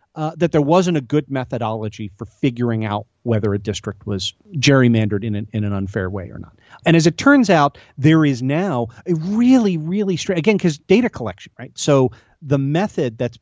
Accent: American